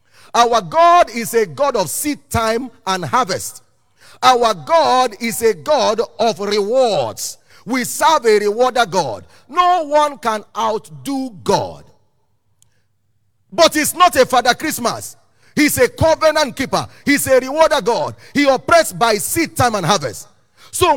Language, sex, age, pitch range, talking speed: English, male, 40-59, 210-295 Hz, 140 wpm